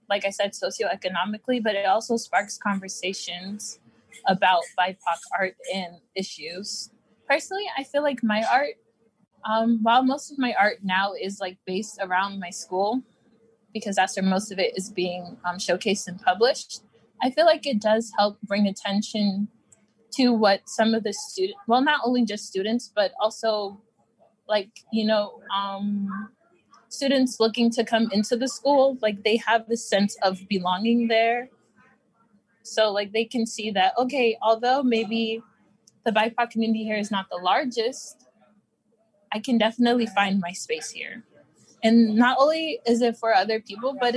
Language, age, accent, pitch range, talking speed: English, 20-39, American, 200-235 Hz, 160 wpm